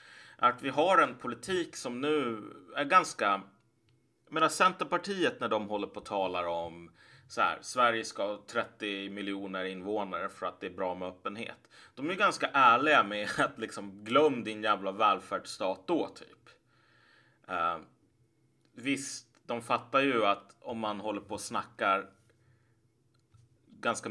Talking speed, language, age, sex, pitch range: 150 wpm, Swedish, 30-49, male, 95-120 Hz